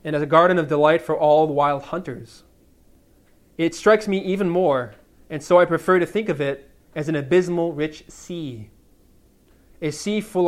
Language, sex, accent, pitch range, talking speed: English, male, American, 135-165 Hz, 185 wpm